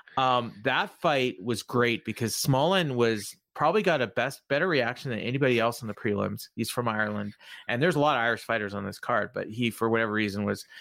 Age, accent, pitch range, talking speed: 30-49, American, 105-130 Hz, 215 wpm